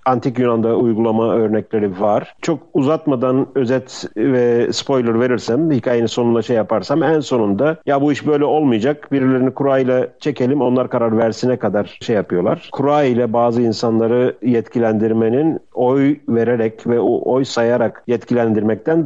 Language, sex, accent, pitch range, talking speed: Turkish, male, native, 115-140 Hz, 135 wpm